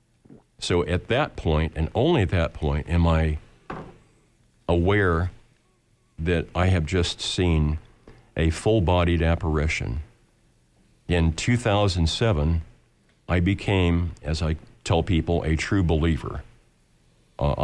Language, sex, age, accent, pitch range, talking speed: English, male, 50-69, American, 80-100 Hz, 110 wpm